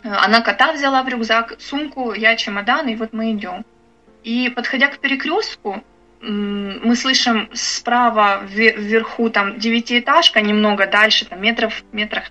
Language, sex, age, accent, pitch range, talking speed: Ukrainian, female, 20-39, native, 220-270 Hz, 135 wpm